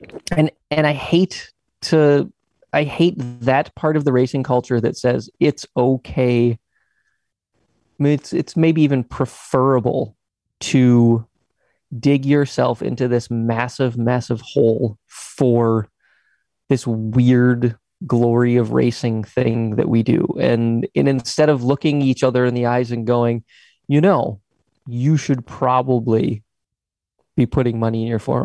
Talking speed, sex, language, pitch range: 135 wpm, male, English, 120-140 Hz